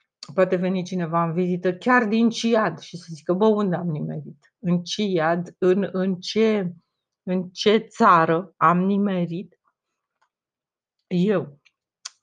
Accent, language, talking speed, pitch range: native, Romanian, 130 wpm, 175-225 Hz